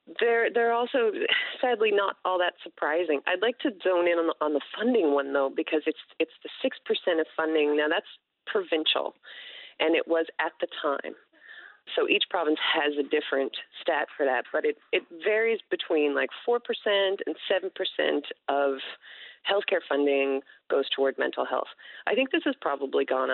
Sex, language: female, English